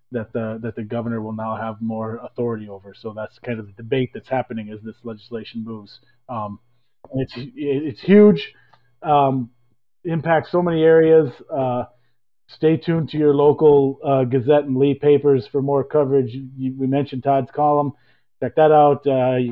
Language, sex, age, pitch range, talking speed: English, male, 30-49, 120-145 Hz, 175 wpm